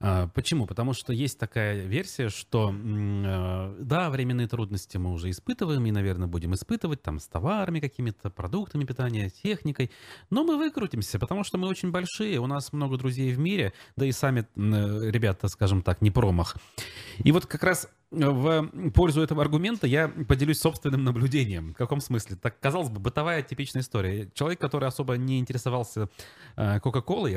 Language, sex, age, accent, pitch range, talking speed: Russian, male, 30-49, native, 100-145 Hz, 160 wpm